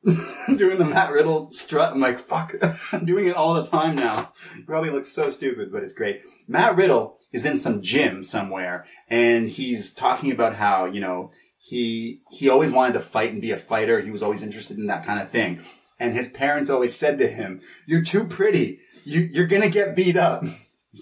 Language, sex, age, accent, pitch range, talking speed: English, male, 30-49, American, 115-160 Hz, 205 wpm